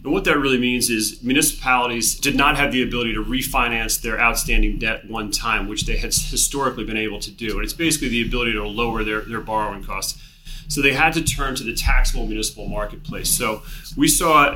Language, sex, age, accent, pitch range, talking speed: English, male, 30-49, American, 115-150 Hz, 210 wpm